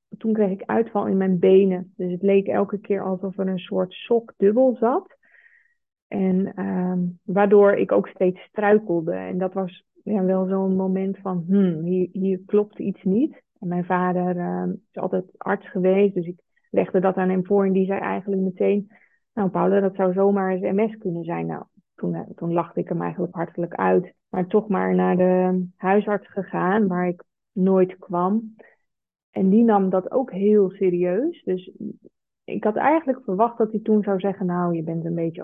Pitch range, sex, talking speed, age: 180-205 Hz, female, 185 wpm, 20-39